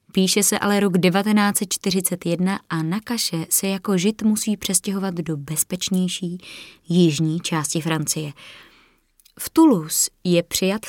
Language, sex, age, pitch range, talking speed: Czech, female, 20-39, 170-205 Hz, 120 wpm